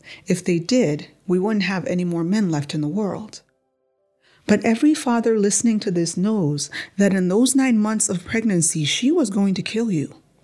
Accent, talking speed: American, 190 wpm